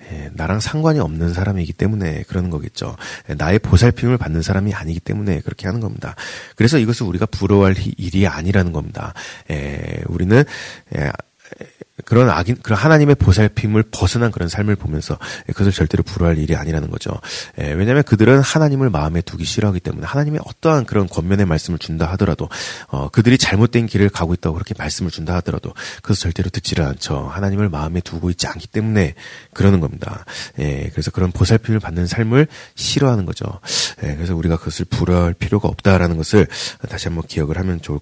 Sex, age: male, 40-59